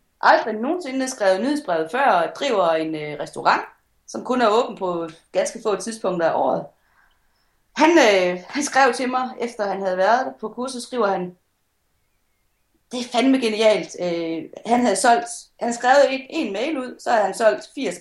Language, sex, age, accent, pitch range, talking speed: Danish, female, 30-49, native, 175-240 Hz, 180 wpm